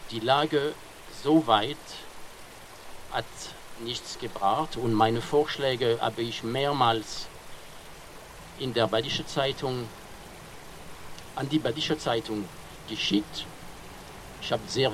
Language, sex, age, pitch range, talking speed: German, male, 50-69, 110-140 Hz, 100 wpm